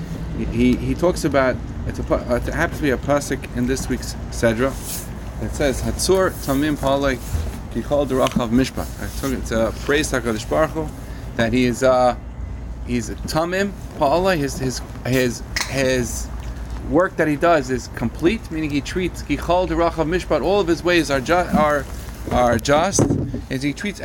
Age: 30-49